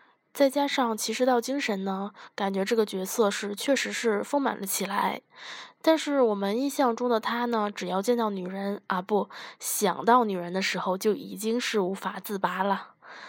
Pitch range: 190-235 Hz